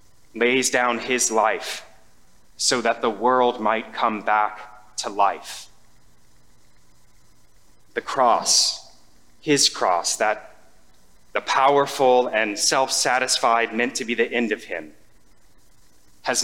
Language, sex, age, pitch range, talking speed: English, male, 30-49, 105-125 Hz, 110 wpm